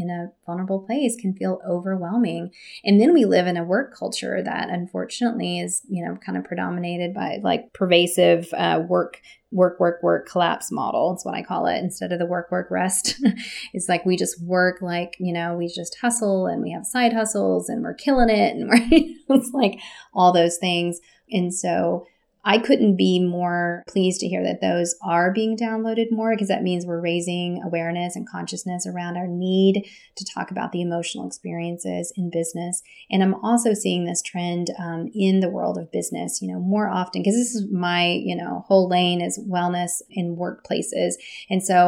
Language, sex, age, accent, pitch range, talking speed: English, female, 30-49, American, 175-200 Hz, 190 wpm